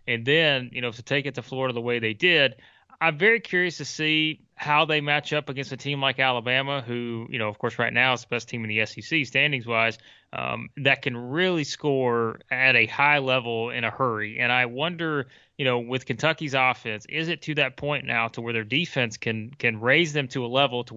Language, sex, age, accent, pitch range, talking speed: English, male, 20-39, American, 120-155 Hz, 225 wpm